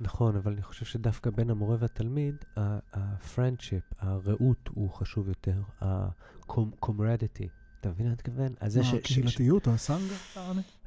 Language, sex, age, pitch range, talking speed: English, male, 30-49, 100-125 Hz, 115 wpm